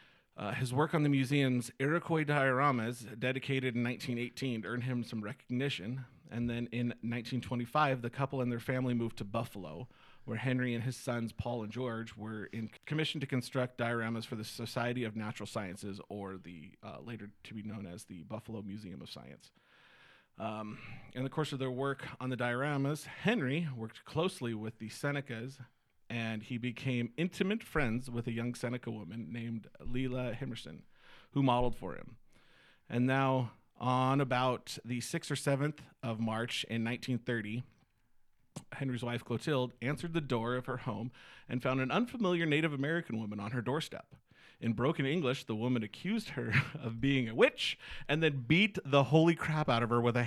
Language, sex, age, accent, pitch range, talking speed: English, male, 40-59, American, 115-140 Hz, 175 wpm